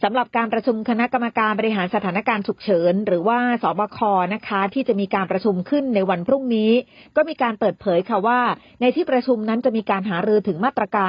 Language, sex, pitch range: Thai, female, 190-245 Hz